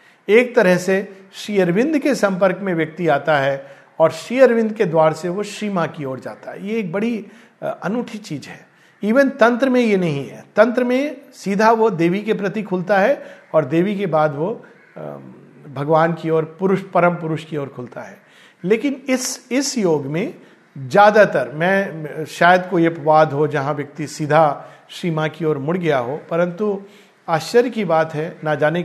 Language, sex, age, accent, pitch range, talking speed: Hindi, male, 50-69, native, 155-210 Hz, 180 wpm